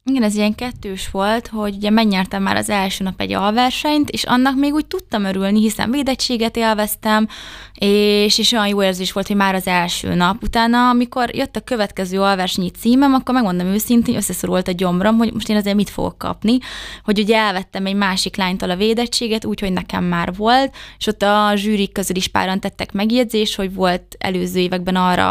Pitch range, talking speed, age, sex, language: 190-220 Hz, 190 wpm, 20-39, female, Hungarian